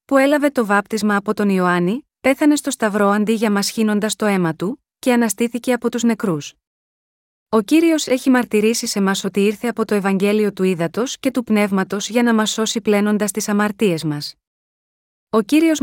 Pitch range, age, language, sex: 200-250 Hz, 20-39, Greek, female